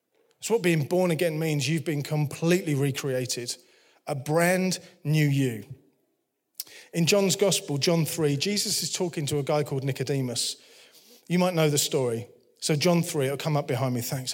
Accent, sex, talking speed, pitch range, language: British, male, 170 wpm, 140-175 Hz, English